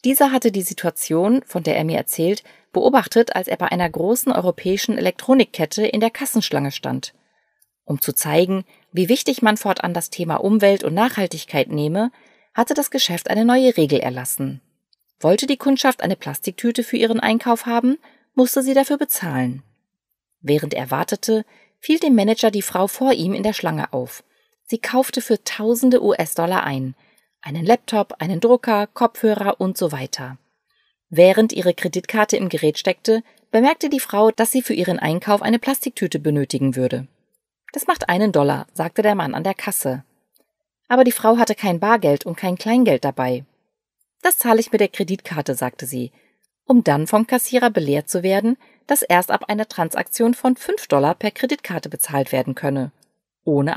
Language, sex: German, female